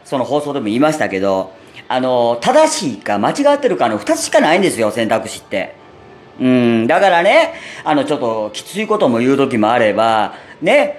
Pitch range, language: 120-195 Hz, Japanese